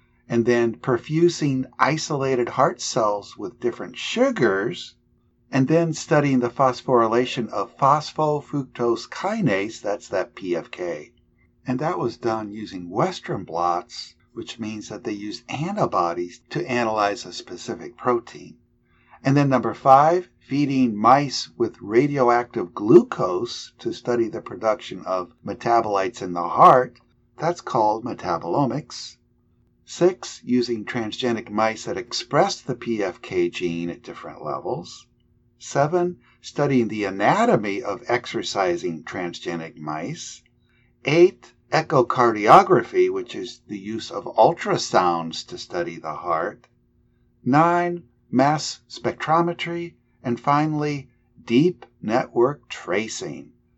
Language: English